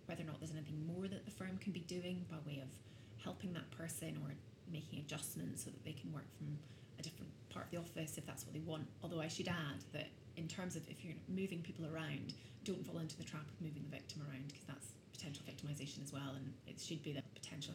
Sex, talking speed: female, 245 wpm